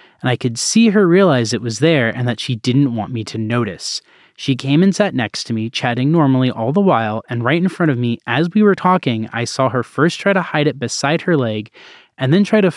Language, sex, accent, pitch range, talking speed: English, male, American, 120-165 Hz, 255 wpm